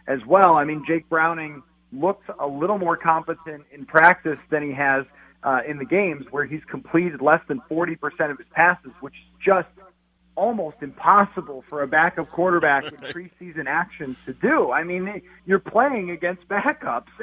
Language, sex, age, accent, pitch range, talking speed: English, male, 40-59, American, 150-185 Hz, 170 wpm